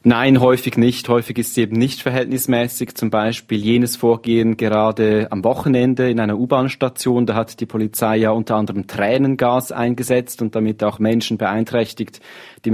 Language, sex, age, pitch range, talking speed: German, male, 30-49, 110-125 Hz, 160 wpm